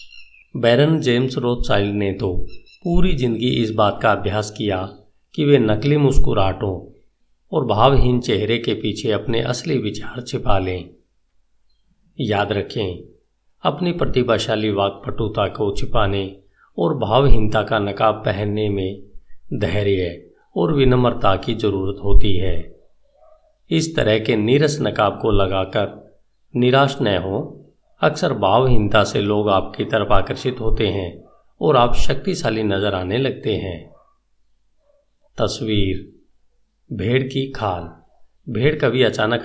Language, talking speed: Hindi, 120 wpm